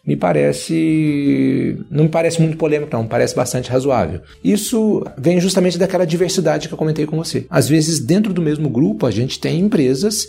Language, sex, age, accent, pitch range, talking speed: Portuguese, male, 40-59, Brazilian, 120-165 Hz, 185 wpm